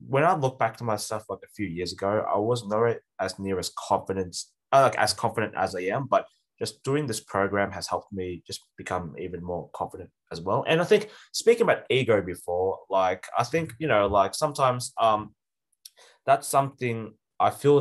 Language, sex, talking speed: English, male, 200 wpm